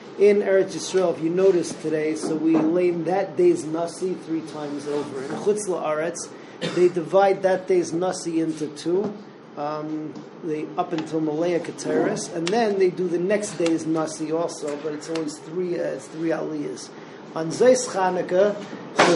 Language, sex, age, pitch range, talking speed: English, male, 40-59, 160-190 Hz, 165 wpm